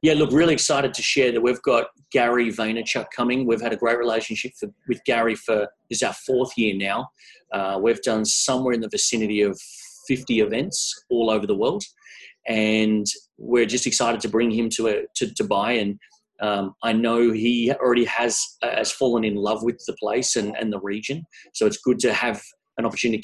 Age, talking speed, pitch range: 30-49, 195 wpm, 110-130 Hz